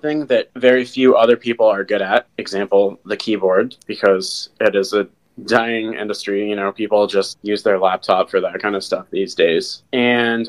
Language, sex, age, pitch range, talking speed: English, male, 20-39, 105-130 Hz, 190 wpm